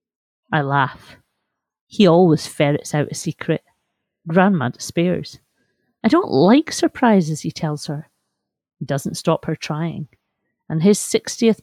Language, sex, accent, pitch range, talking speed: English, female, British, 160-205 Hz, 130 wpm